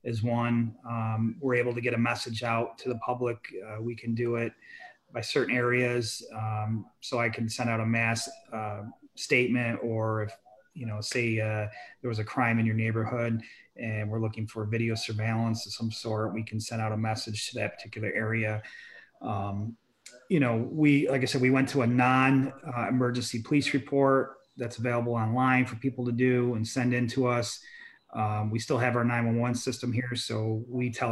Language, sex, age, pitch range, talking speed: English, male, 30-49, 110-125 Hz, 195 wpm